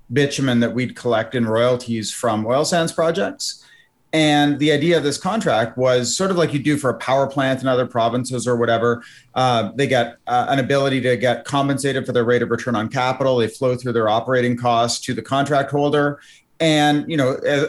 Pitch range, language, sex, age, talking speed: 125-150 Hz, English, male, 30-49, 205 wpm